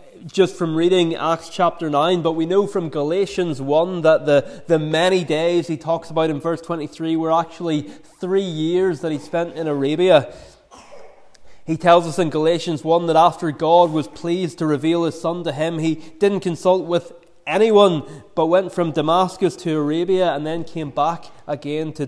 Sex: male